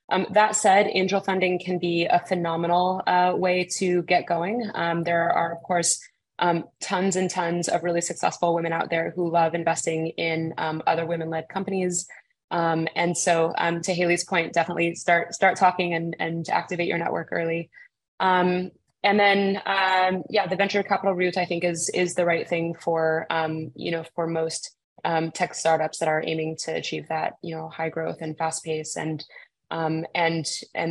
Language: English